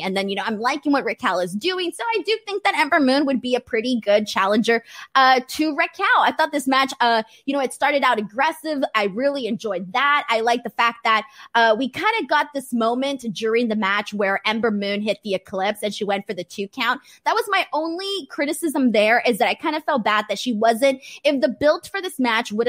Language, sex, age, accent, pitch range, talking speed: English, female, 20-39, American, 210-290 Hz, 245 wpm